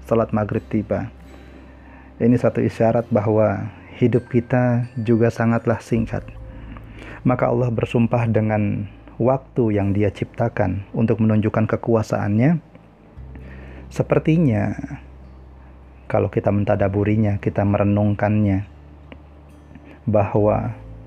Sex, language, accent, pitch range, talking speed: male, Indonesian, native, 100-120 Hz, 85 wpm